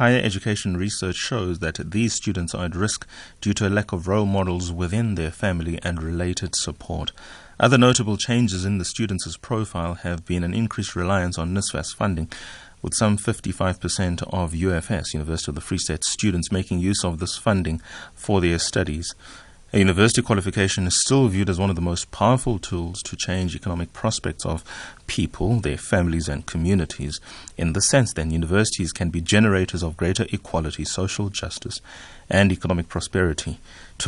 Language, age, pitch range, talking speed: English, 30-49, 85-105 Hz, 170 wpm